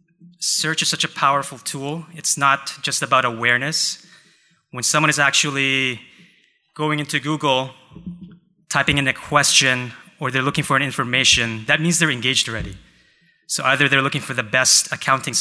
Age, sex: 20-39, male